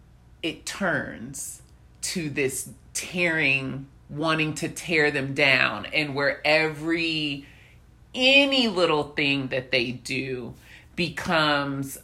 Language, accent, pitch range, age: English, American, 145-195 Hz, 30-49